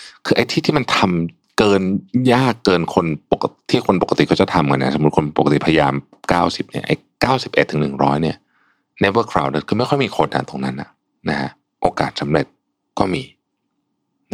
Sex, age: male, 60-79